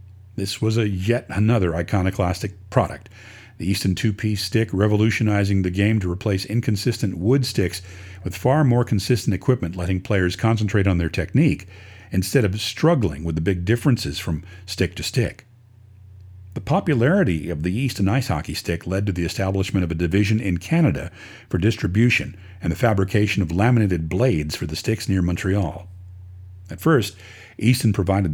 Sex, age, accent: male, 50-69, American